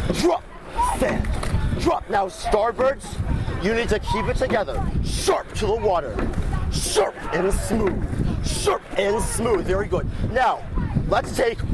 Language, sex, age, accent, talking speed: English, male, 40-59, American, 135 wpm